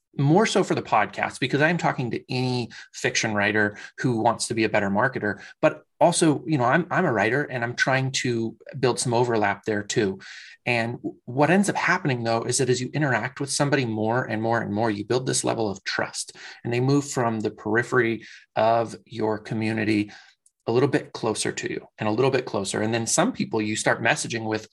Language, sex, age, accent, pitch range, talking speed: English, male, 20-39, American, 110-135 Hz, 215 wpm